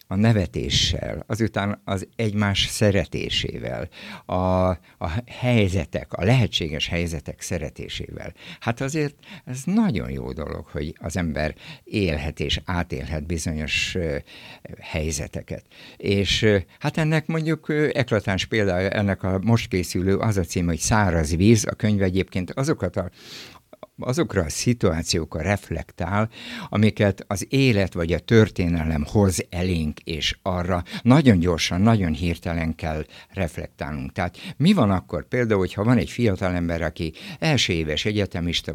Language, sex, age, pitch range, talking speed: Hungarian, male, 60-79, 85-110 Hz, 125 wpm